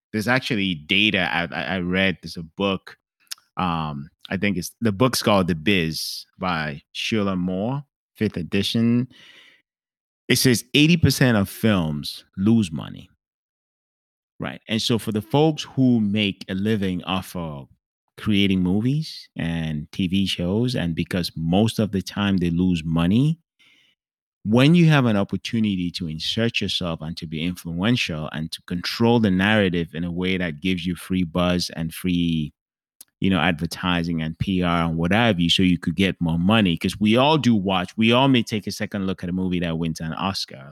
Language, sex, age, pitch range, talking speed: English, male, 30-49, 85-110 Hz, 170 wpm